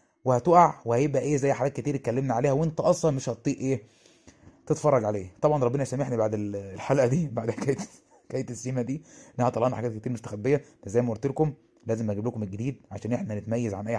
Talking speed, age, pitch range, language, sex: 190 wpm, 20-39, 110-135 Hz, Arabic, male